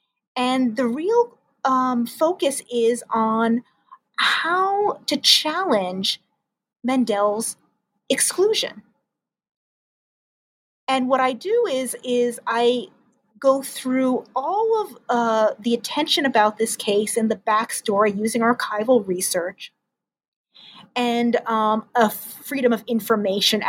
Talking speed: 105 wpm